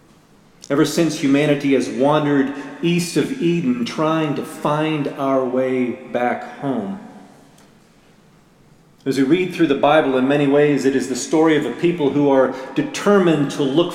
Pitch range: 130-155 Hz